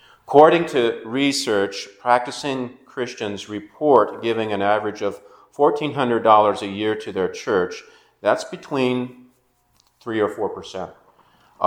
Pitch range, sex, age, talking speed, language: 105-140 Hz, male, 40-59, 110 wpm, English